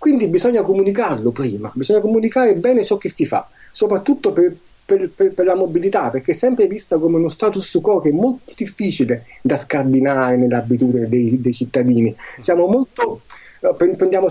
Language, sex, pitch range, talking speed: Italian, male, 130-205 Hz, 160 wpm